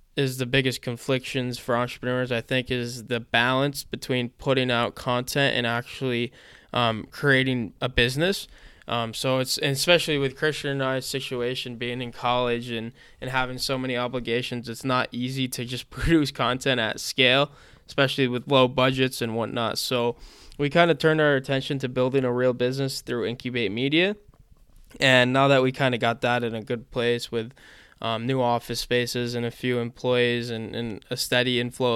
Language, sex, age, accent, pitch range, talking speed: English, male, 20-39, American, 120-135 Hz, 180 wpm